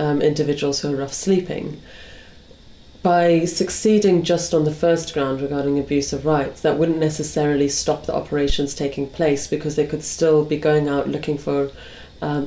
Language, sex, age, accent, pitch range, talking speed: English, female, 30-49, British, 145-160 Hz, 170 wpm